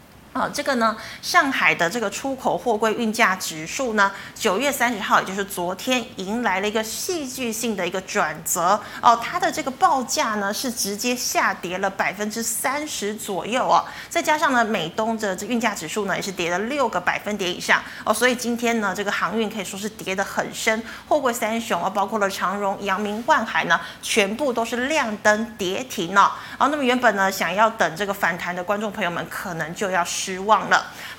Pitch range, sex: 195-250 Hz, female